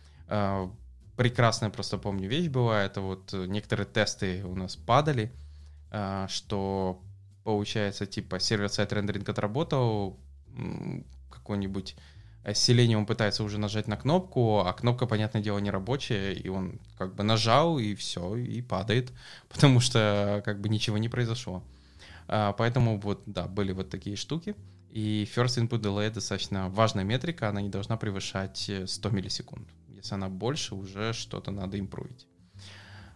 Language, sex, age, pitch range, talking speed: English, male, 20-39, 100-120 Hz, 135 wpm